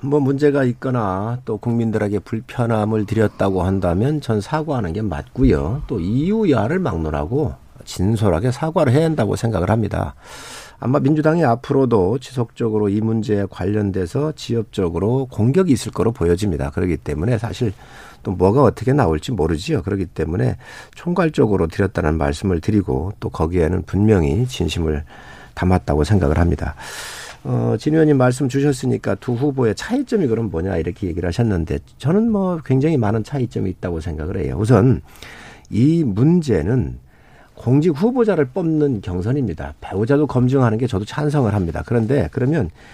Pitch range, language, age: 95-140 Hz, Korean, 50-69